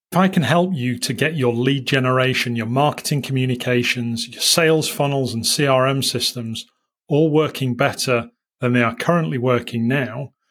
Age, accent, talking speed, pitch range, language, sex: 30-49, British, 160 wpm, 120-140 Hz, English, male